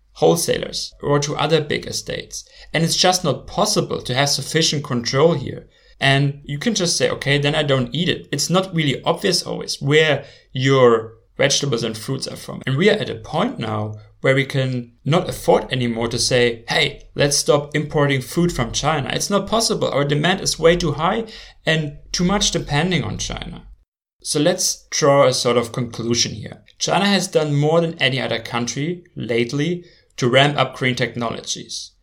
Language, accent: English, German